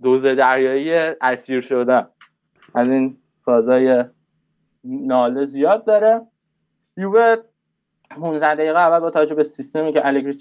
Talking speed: 110 wpm